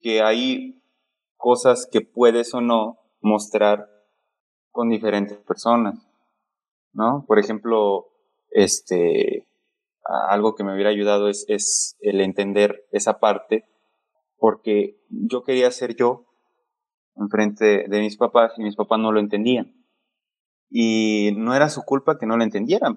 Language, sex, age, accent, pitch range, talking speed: English, male, 20-39, Mexican, 105-125 Hz, 130 wpm